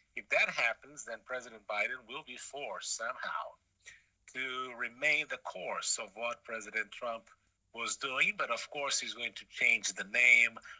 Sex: male